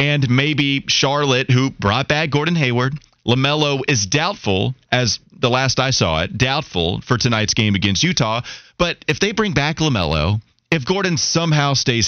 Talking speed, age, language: 165 wpm, 30-49, English